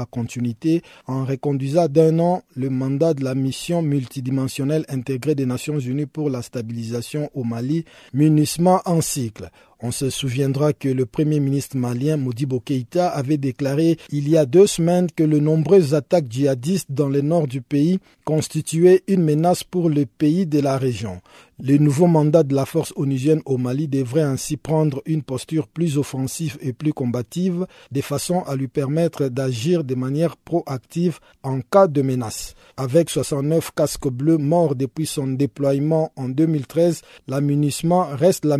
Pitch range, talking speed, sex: 135-165 Hz, 160 wpm, male